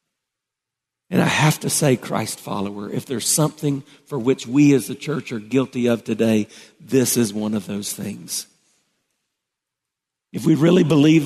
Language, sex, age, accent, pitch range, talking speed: English, male, 50-69, American, 110-145 Hz, 160 wpm